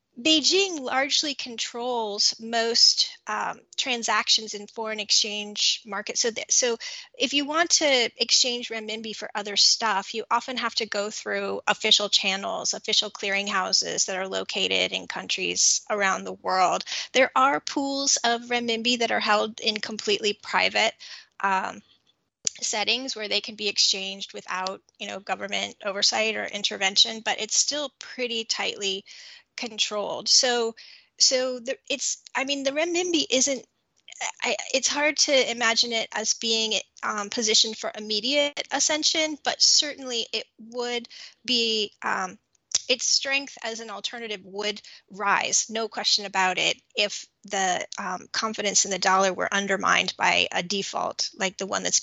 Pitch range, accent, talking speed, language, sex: 205-260 Hz, American, 145 wpm, English, female